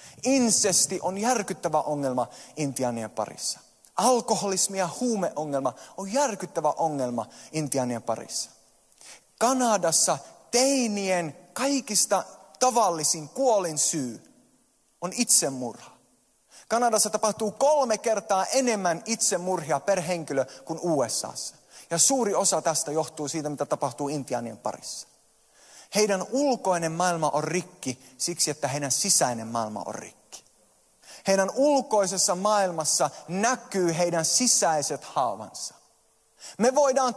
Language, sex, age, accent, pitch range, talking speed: Finnish, male, 30-49, native, 160-245 Hz, 100 wpm